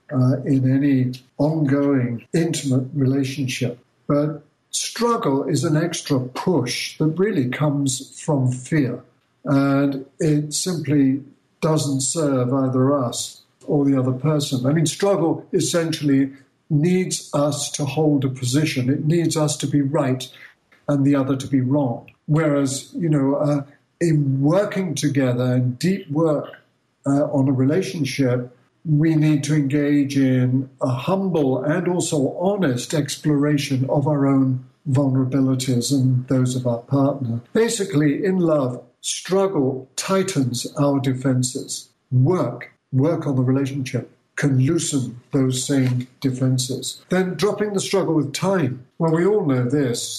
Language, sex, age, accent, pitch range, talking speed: English, male, 60-79, British, 130-155 Hz, 135 wpm